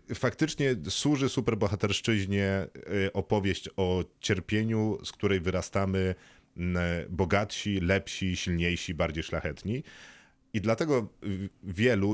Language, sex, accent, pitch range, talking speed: Polish, male, native, 85-105 Hz, 85 wpm